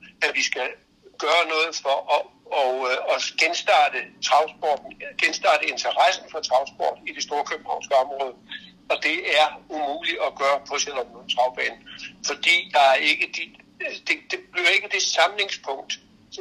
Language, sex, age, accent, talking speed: Danish, male, 60-79, native, 145 wpm